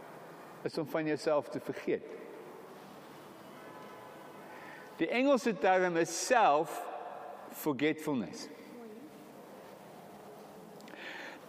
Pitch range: 155-220 Hz